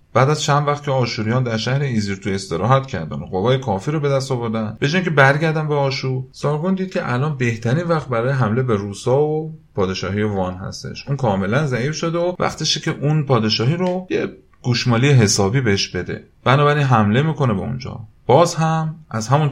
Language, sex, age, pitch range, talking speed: Persian, male, 30-49, 105-145 Hz, 190 wpm